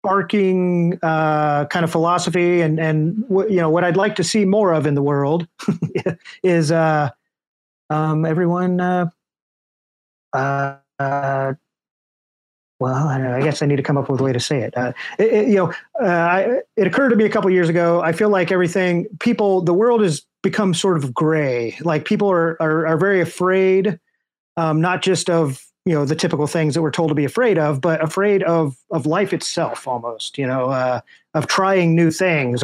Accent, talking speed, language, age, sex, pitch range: American, 200 wpm, English, 30-49, male, 145-175 Hz